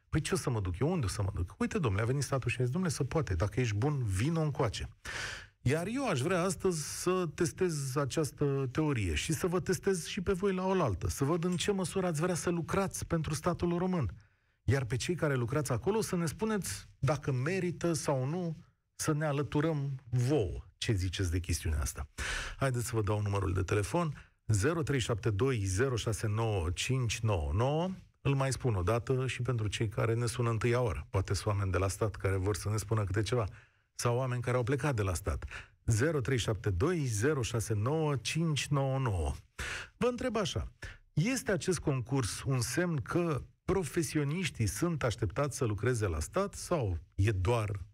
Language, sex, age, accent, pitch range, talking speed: Romanian, male, 40-59, native, 105-165 Hz, 180 wpm